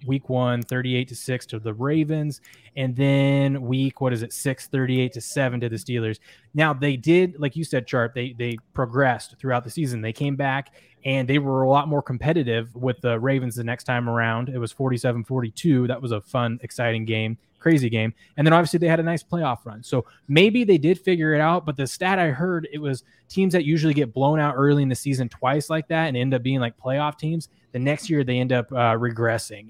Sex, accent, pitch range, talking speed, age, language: male, American, 120-150 Hz, 230 wpm, 20-39, English